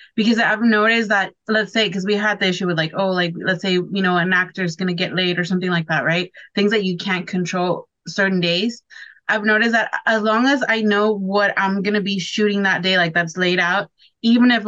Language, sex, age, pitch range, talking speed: English, female, 20-39, 185-210 Hz, 245 wpm